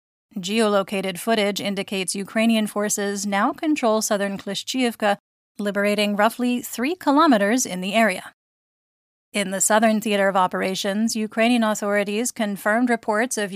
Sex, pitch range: female, 200-225 Hz